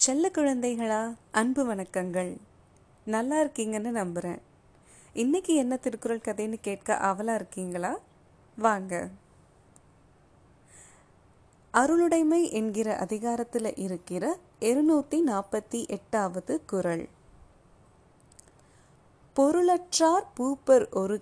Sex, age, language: female, 20-39, Tamil